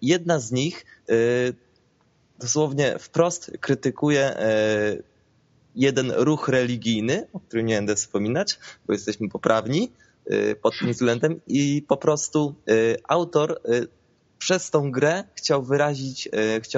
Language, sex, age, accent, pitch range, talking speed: Polish, male, 20-39, native, 115-155 Hz, 105 wpm